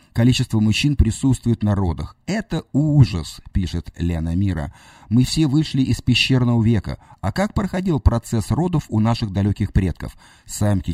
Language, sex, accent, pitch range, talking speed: Russian, male, native, 95-130 Hz, 150 wpm